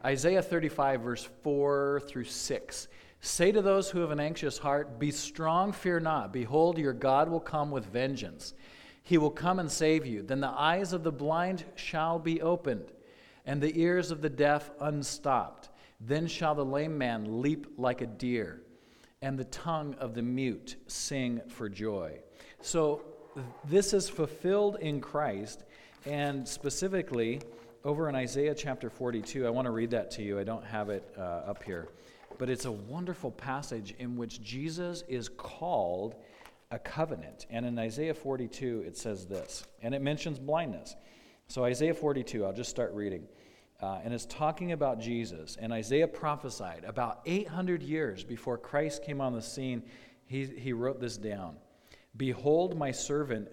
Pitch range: 120-155 Hz